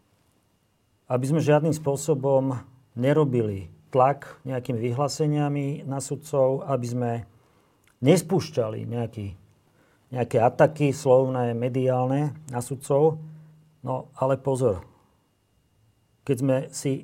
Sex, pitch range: male, 115-140 Hz